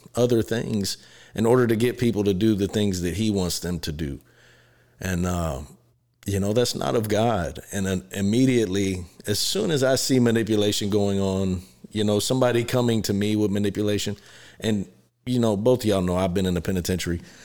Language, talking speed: English, 190 wpm